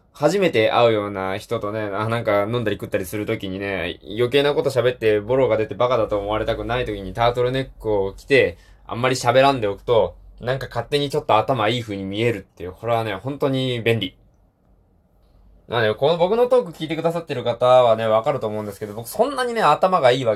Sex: male